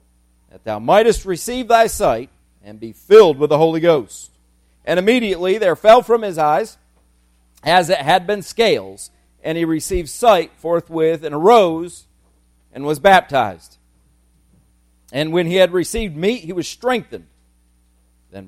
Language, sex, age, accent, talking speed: English, male, 40-59, American, 145 wpm